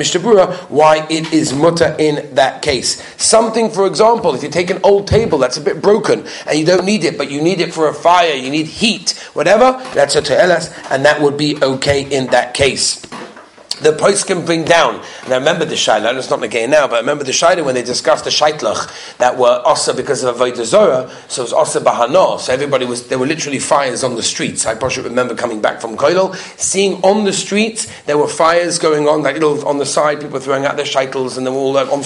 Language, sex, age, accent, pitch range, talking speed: English, male, 40-59, British, 140-190 Hz, 235 wpm